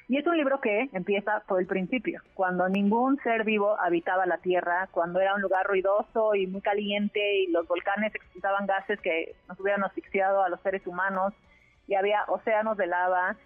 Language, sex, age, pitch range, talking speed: Spanish, female, 30-49, 185-220 Hz, 185 wpm